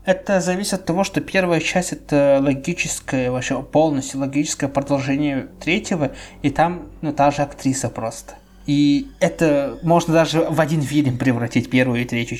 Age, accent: 20-39, native